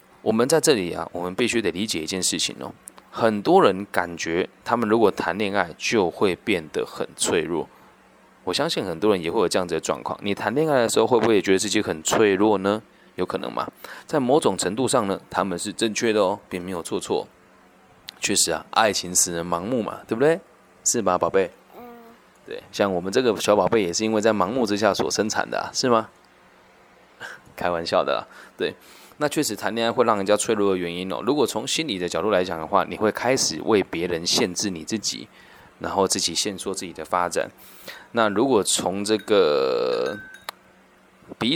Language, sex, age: Chinese, male, 20-39